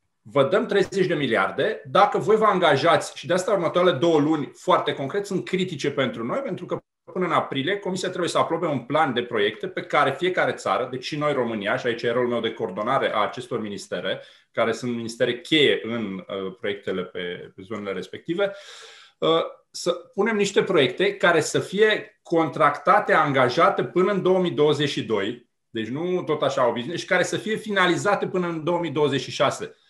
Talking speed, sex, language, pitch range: 175 wpm, male, Romanian, 140-200 Hz